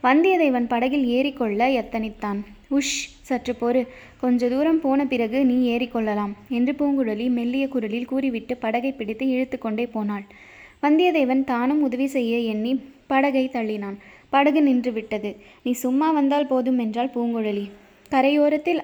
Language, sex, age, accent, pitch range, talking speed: Tamil, female, 20-39, native, 230-270 Hz, 130 wpm